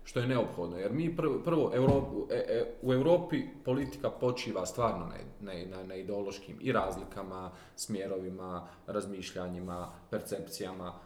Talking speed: 120 wpm